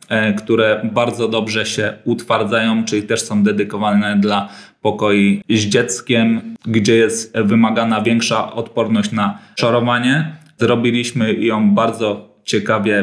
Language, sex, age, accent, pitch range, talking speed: Polish, male, 20-39, native, 110-120 Hz, 110 wpm